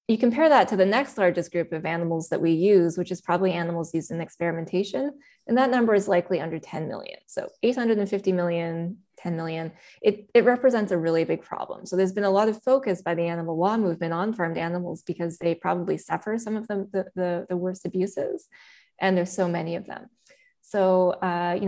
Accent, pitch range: American, 175-205 Hz